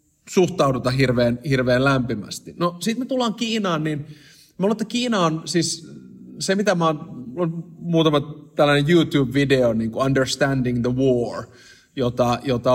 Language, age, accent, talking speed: Finnish, 30-49, native, 135 wpm